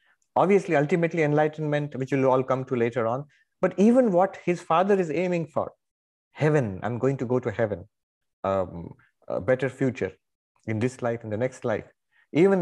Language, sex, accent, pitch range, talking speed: English, male, Indian, 115-155 Hz, 175 wpm